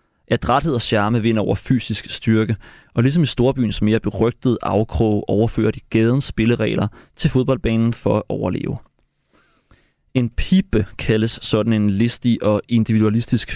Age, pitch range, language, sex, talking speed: 30-49, 105-120 Hz, Danish, male, 140 wpm